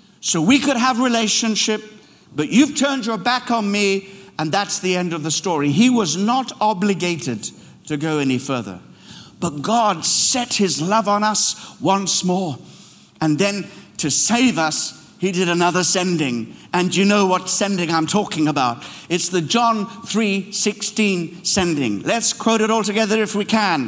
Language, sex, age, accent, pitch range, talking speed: English, male, 60-79, British, 180-230 Hz, 170 wpm